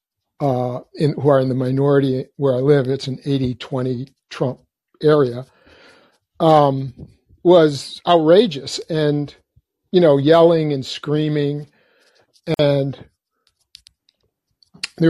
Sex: male